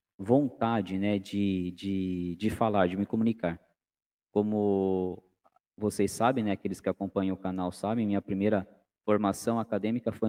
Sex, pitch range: male, 100-120 Hz